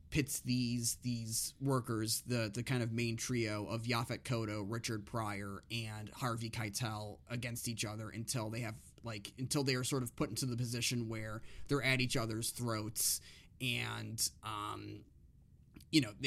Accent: American